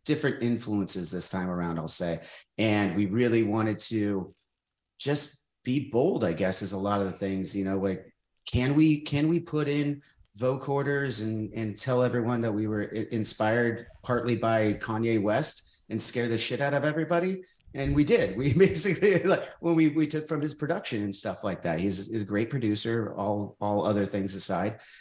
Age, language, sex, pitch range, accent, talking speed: 30-49, English, male, 100-130 Hz, American, 195 wpm